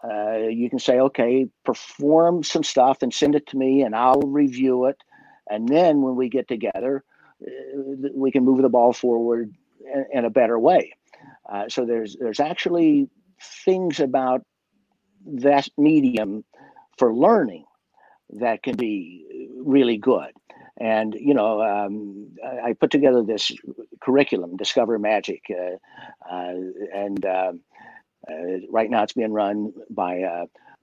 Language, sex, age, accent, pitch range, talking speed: English, male, 50-69, American, 105-145 Hz, 140 wpm